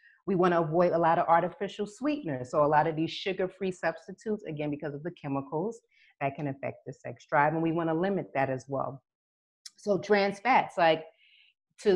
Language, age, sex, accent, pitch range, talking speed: English, 30-49, female, American, 150-185 Hz, 190 wpm